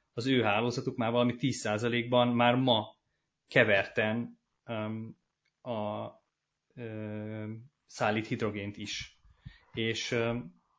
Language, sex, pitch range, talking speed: Hungarian, male, 110-130 Hz, 95 wpm